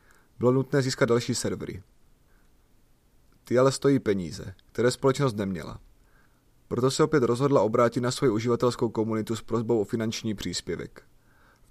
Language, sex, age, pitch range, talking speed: Czech, male, 30-49, 110-130 Hz, 140 wpm